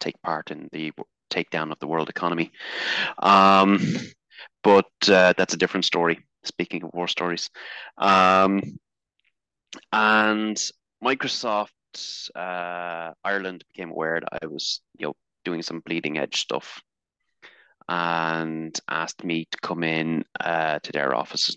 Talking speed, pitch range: 130 wpm, 85-105 Hz